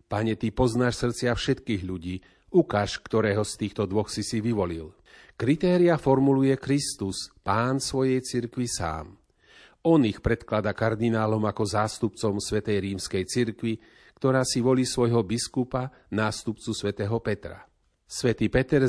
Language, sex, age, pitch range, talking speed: Slovak, male, 40-59, 105-130 Hz, 125 wpm